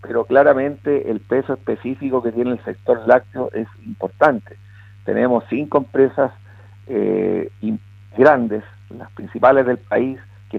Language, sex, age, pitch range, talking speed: Spanish, male, 50-69, 100-140 Hz, 125 wpm